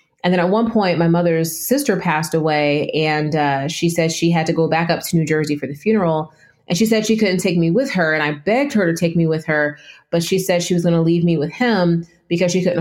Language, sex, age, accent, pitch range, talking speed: English, female, 30-49, American, 155-185 Hz, 270 wpm